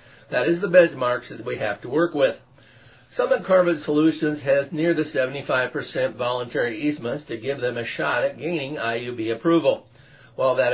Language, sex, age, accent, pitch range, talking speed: English, male, 50-69, American, 125-165 Hz, 170 wpm